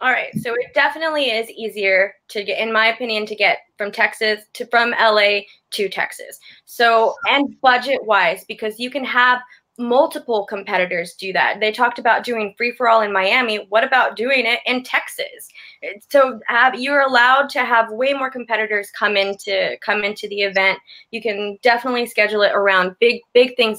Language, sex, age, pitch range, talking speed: English, female, 20-39, 200-255 Hz, 185 wpm